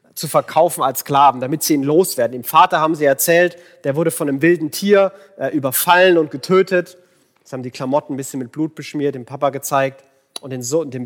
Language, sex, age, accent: German, male, 30-49, German